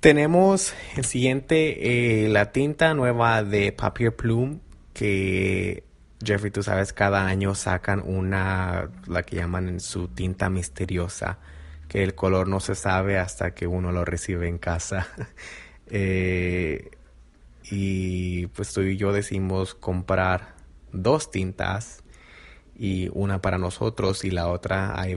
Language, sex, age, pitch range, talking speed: Spanish, male, 20-39, 90-110 Hz, 130 wpm